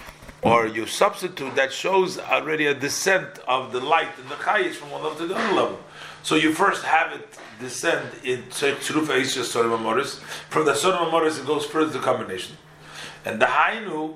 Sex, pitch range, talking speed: male, 130-170 Hz, 180 wpm